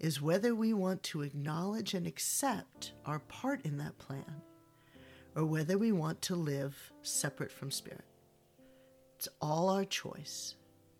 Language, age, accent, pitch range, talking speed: English, 40-59, American, 150-185 Hz, 140 wpm